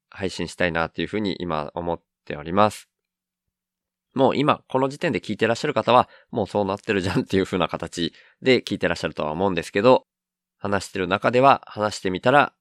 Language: Japanese